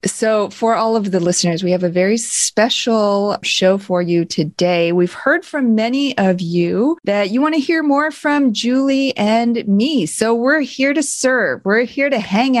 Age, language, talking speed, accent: 30-49, English, 190 wpm, American